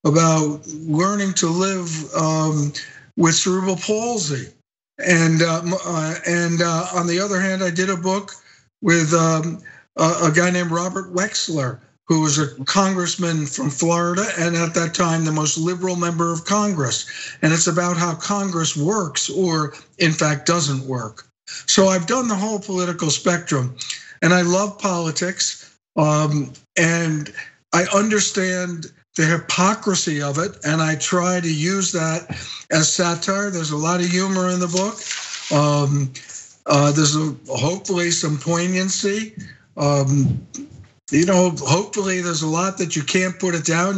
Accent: American